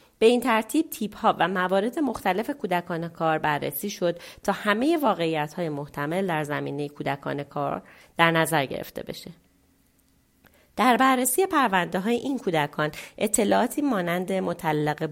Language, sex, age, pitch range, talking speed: Persian, female, 30-49, 150-205 Hz, 125 wpm